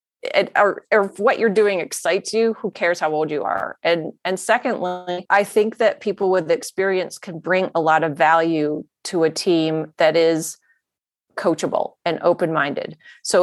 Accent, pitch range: American, 165-200 Hz